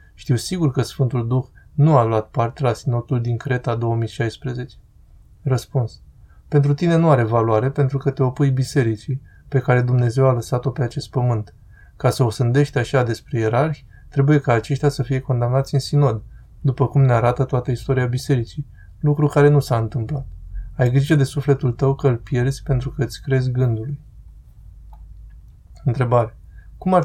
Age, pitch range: 20-39, 120-140 Hz